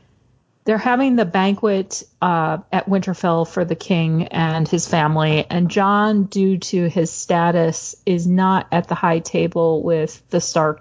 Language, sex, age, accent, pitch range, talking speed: English, female, 40-59, American, 150-185 Hz, 155 wpm